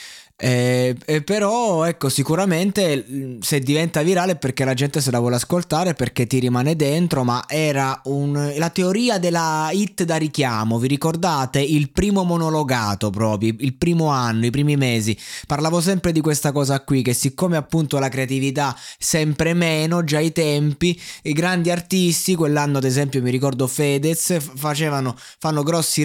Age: 20-39